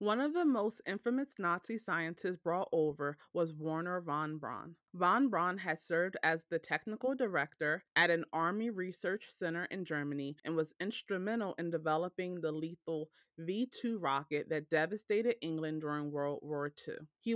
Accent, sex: American, female